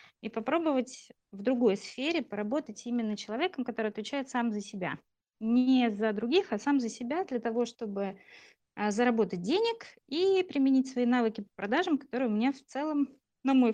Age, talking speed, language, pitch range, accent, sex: 20-39, 165 wpm, Russian, 210-260 Hz, native, female